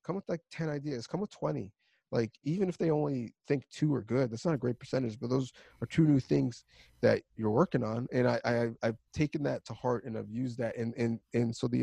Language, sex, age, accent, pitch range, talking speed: English, male, 30-49, American, 120-160 Hz, 250 wpm